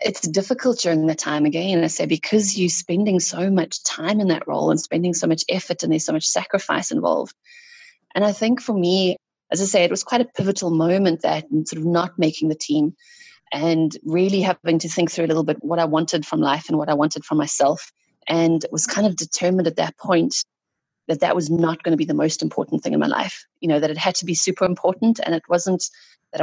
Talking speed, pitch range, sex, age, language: 240 wpm, 155-190 Hz, female, 30-49, English